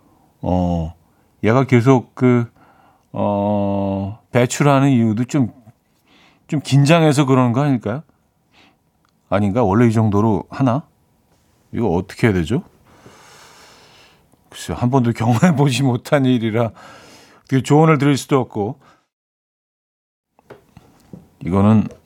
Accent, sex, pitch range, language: native, male, 100-135 Hz, Korean